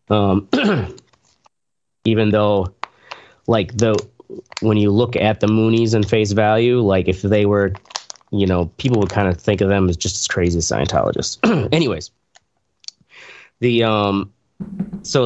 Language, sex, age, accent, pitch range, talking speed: English, male, 30-49, American, 95-110 Hz, 145 wpm